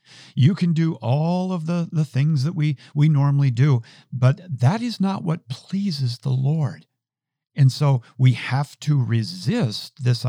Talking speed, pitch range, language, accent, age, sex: 165 wpm, 125-150 Hz, English, American, 50-69, male